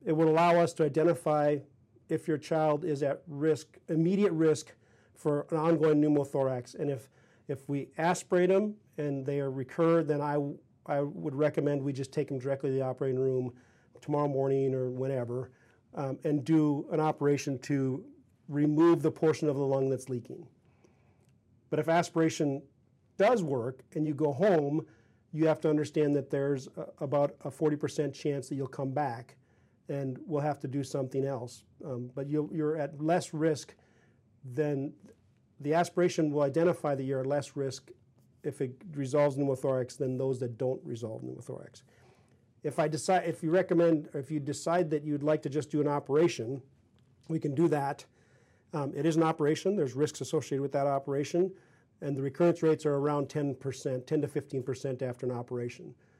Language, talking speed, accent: English, 170 wpm, American